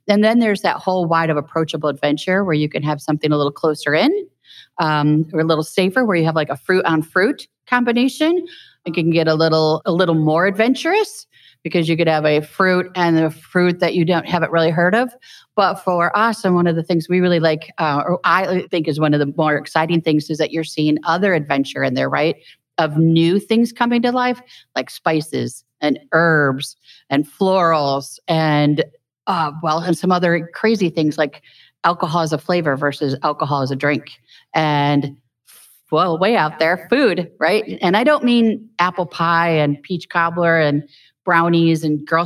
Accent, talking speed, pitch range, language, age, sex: American, 195 wpm, 150-180 Hz, English, 40-59, female